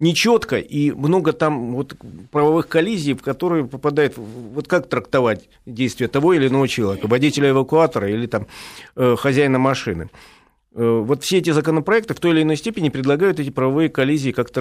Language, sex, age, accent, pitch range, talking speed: Russian, male, 50-69, native, 120-155 Hz, 165 wpm